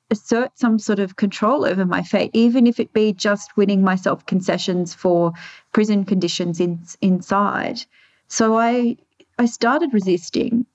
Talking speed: 145 wpm